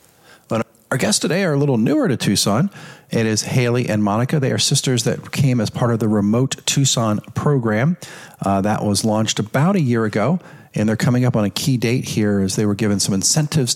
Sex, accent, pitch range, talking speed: male, American, 100-135 Hz, 215 wpm